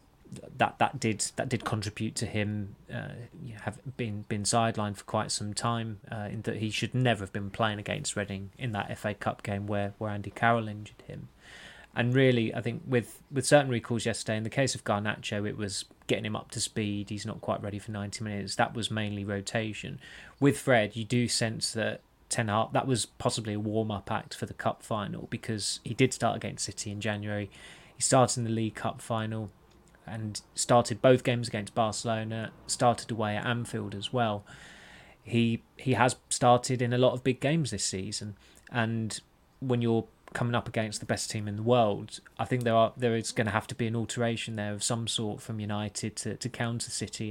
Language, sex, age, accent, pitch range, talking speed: English, male, 20-39, British, 105-120 Hz, 210 wpm